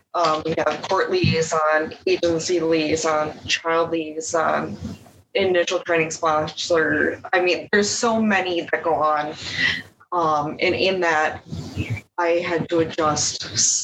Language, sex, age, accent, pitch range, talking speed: English, female, 20-39, American, 155-175 Hz, 120 wpm